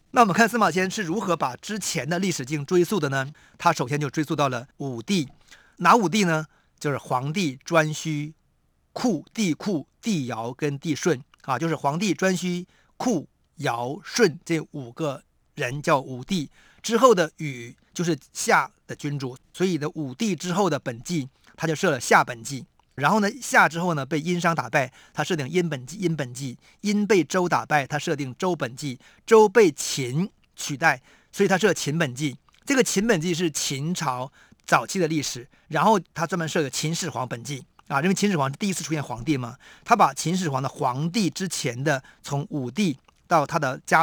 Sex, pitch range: male, 135-180 Hz